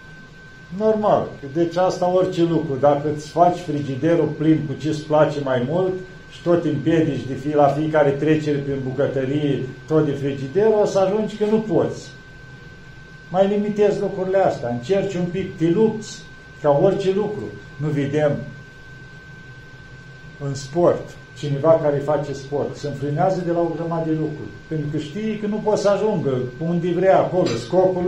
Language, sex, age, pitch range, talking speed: Romanian, male, 50-69, 140-170 Hz, 160 wpm